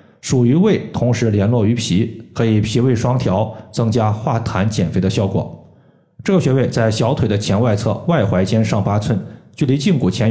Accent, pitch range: native, 105-140 Hz